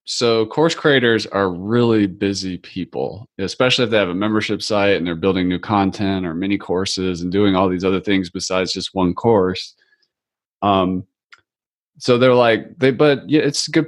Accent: American